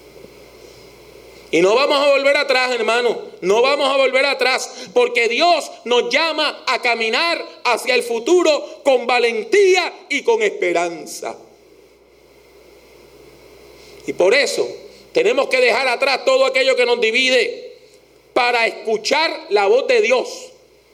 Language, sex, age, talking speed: English, male, 40-59, 125 wpm